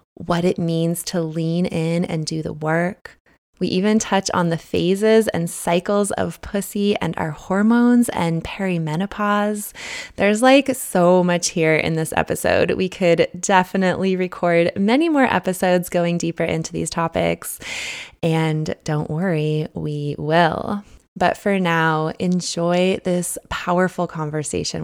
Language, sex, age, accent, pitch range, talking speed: English, female, 20-39, American, 160-190 Hz, 140 wpm